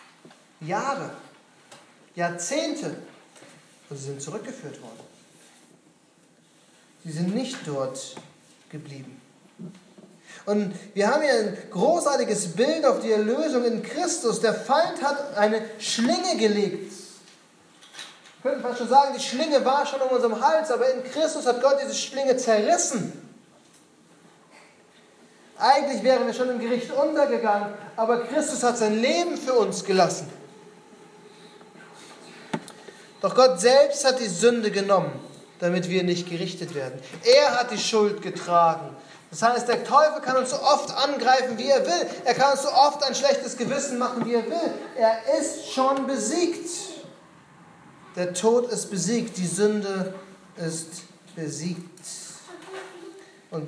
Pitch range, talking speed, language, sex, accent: 180-270 Hz, 135 wpm, German, male, German